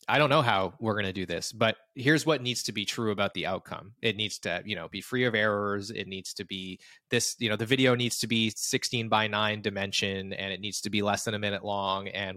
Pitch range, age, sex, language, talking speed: 100-120 Hz, 20-39, male, English, 265 wpm